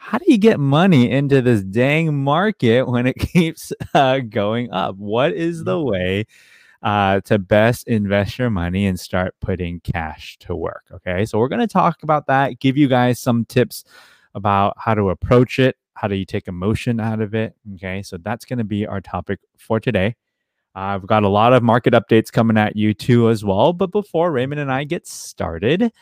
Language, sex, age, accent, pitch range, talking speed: English, male, 20-39, American, 105-140 Hz, 195 wpm